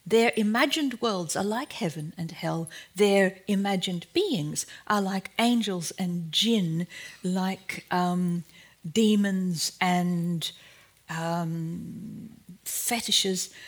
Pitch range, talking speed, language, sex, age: 175-215 Hz, 95 wpm, Dutch, female, 50-69